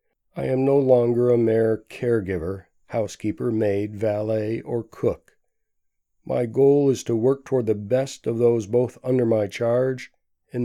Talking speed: 150 wpm